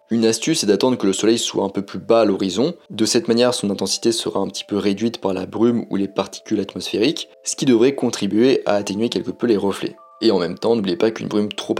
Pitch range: 95-115 Hz